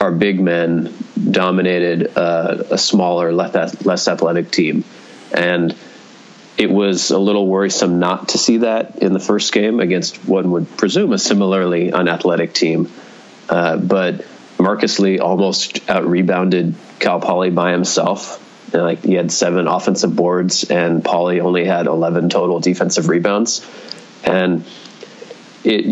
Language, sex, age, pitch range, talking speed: English, male, 30-49, 90-100 Hz, 135 wpm